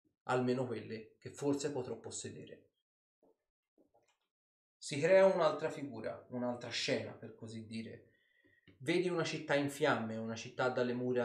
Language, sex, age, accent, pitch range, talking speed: Italian, male, 30-49, native, 115-150 Hz, 130 wpm